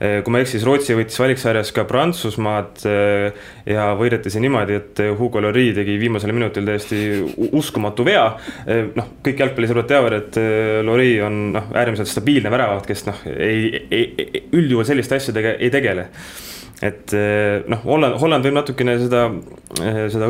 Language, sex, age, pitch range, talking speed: English, male, 20-39, 105-125 Hz, 140 wpm